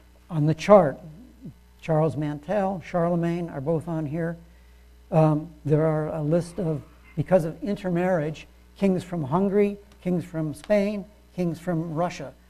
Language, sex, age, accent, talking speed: English, male, 60-79, American, 135 wpm